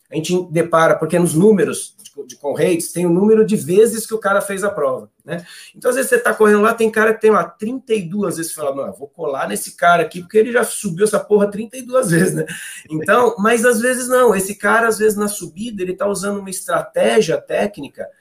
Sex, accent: male, Brazilian